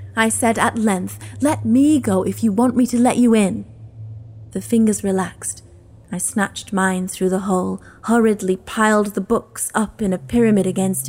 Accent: British